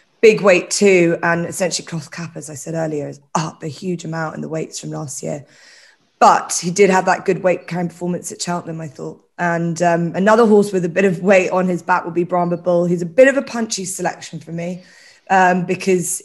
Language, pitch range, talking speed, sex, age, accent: English, 165-190 Hz, 225 wpm, female, 20-39, British